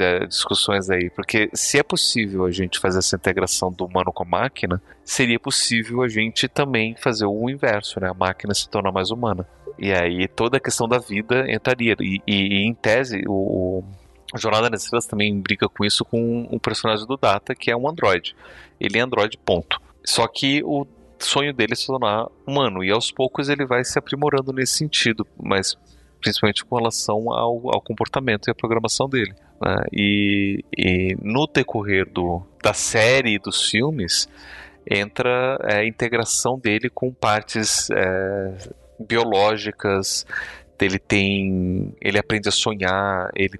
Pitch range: 95-120 Hz